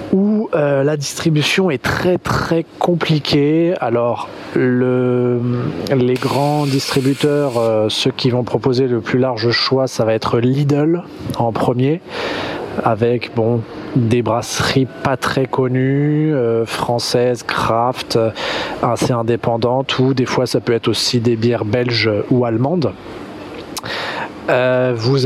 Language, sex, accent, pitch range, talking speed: French, male, French, 115-140 Hz, 120 wpm